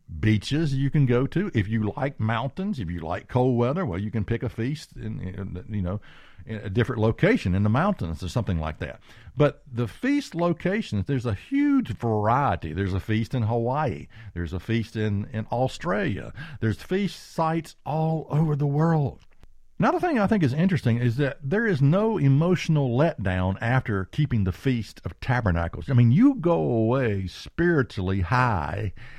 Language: English